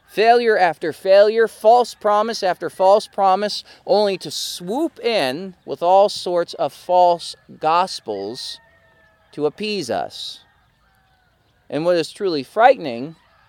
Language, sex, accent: English, male, American